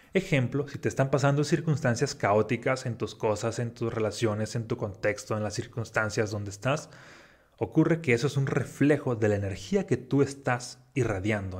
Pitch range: 110-140 Hz